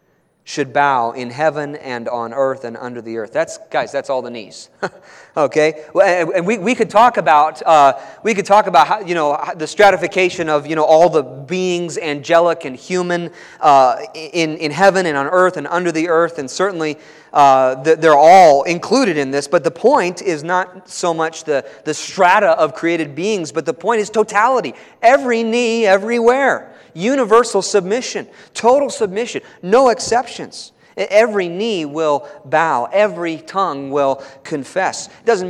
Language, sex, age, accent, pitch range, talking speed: English, male, 30-49, American, 145-205 Hz, 165 wpm